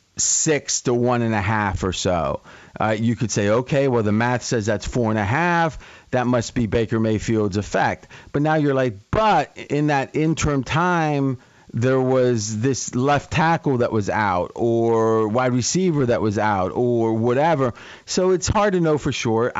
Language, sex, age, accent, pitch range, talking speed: English, male, 40-59, American, 115-150 Hz, 185 wpm